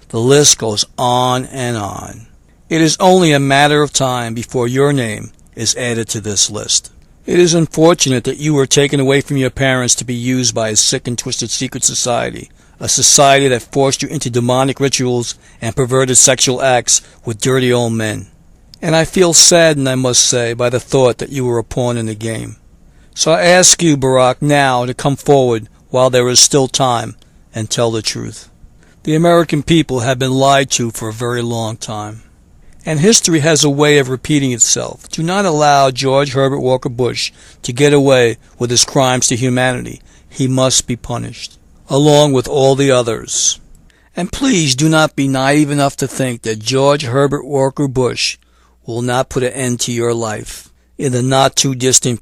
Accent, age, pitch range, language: American, 60-79, 120-145 Hz, English